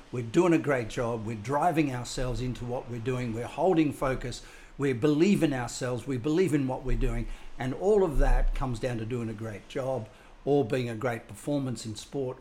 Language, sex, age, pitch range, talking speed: English, male, 60-79, 115-140 Hz, 210 wpm